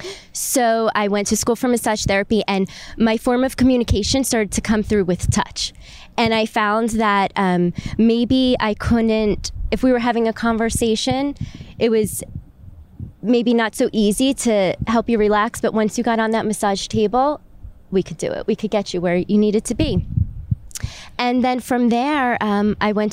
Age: 20-39